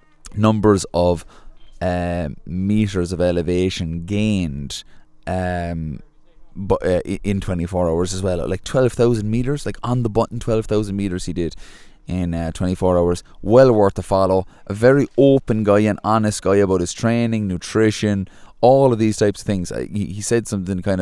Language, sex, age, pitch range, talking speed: English, male, 20-39, 90-105 Hz, 165 wpm